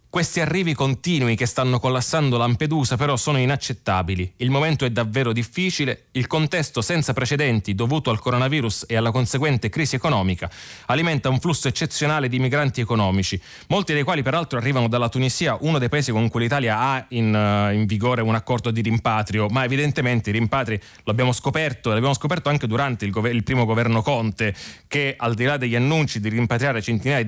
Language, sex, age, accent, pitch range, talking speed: Italian, male, 20-39, native, 115-140 Hz, 175 wpm